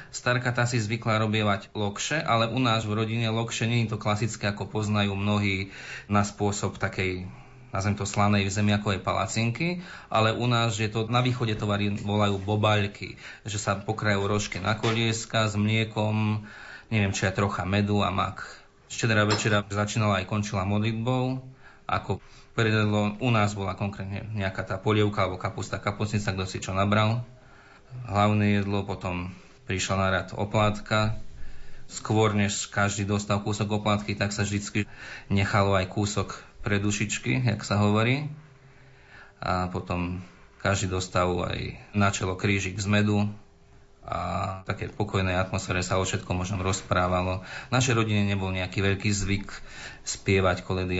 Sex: male